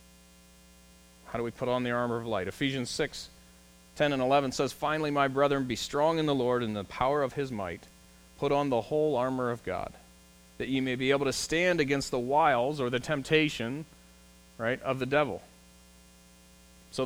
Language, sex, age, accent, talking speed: English, male, 30-49, American, 185 wpm